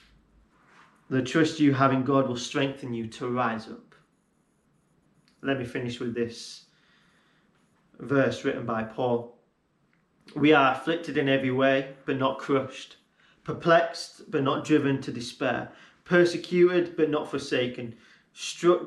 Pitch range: 120-150 Hz